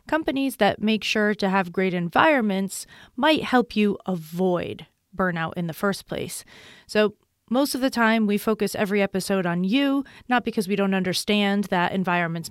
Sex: female